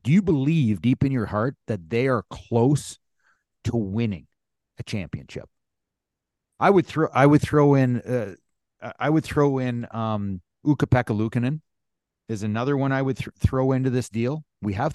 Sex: male